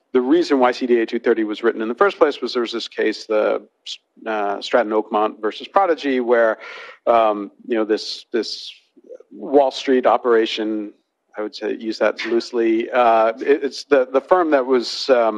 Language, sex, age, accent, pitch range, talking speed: English, male, 50-69, American, 115-145 Hz, 170 wpm